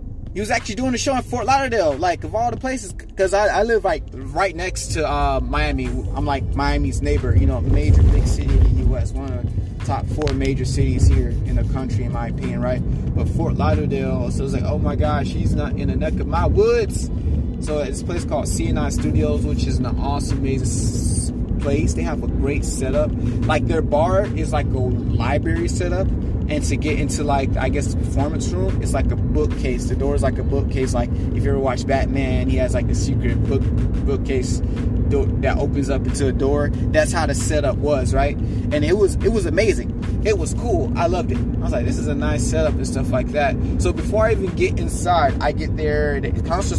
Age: 20-39